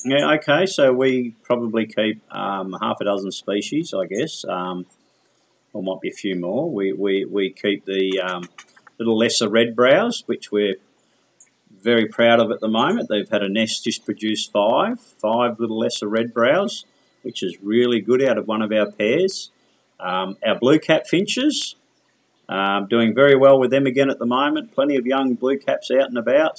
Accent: Australian